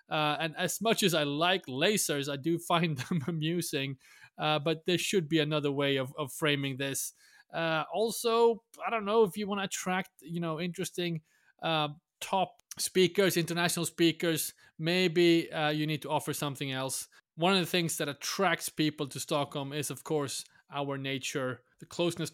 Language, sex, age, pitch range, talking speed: English, male, 20-39, 140-175 Hz, 175 wpm